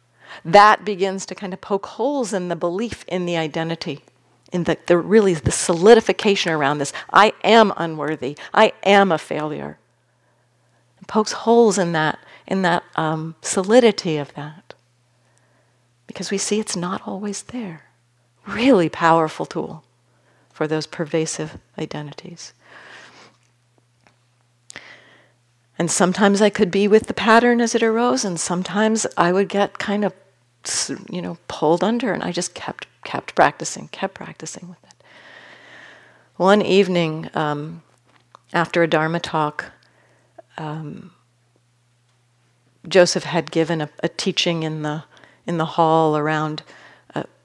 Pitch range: 150-200 Hz